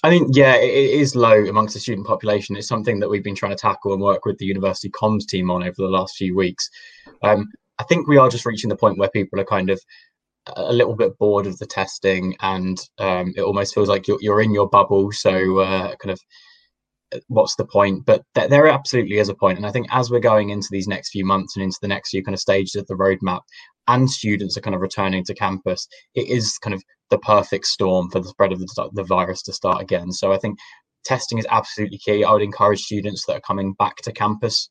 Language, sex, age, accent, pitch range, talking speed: English, male, 10-29, British, 95-110 Hz, 240 wpm